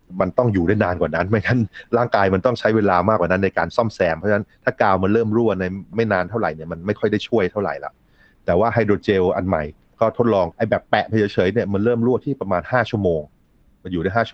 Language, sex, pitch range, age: Thai, male, 90-115 Hz, 30-49